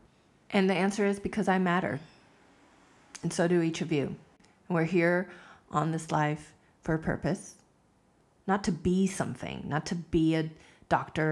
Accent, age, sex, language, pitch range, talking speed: American, 30-49, female, English, 150-180 Hz, 160 wpm